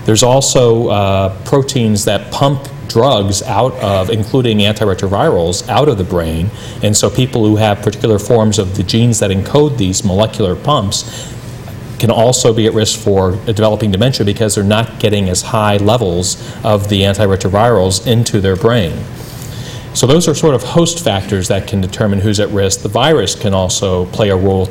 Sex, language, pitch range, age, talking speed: male, English, 100-120 Hz, 40-59, 170 wpm